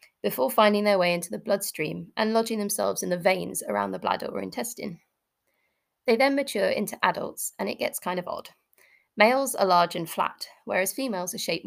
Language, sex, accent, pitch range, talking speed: English, female, British, 200-275 Hz, 195 wpm